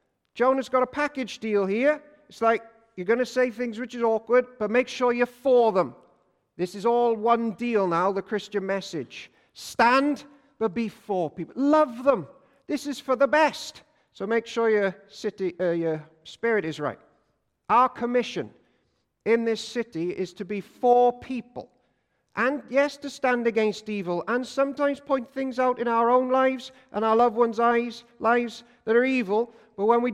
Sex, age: male, 50-69